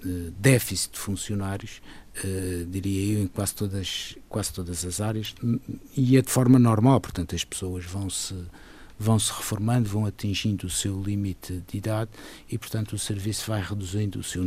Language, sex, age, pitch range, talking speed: Portuguese, male, 60-79, 95-110 Hz, 160 wpm